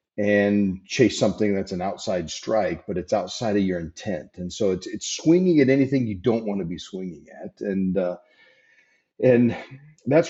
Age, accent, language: 40-59, American, English